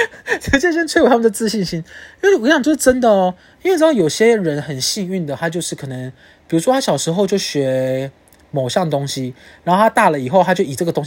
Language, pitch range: Chinese, 140-200 Hz